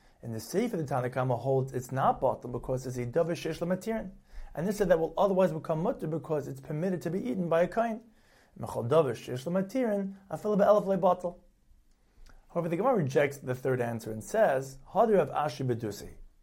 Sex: male